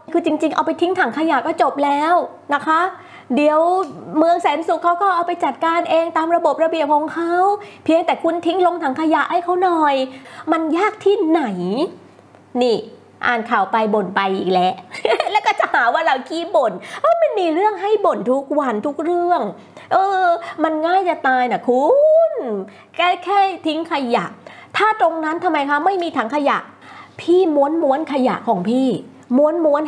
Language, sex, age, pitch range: Thai, female, 20-39, 280-345 Hz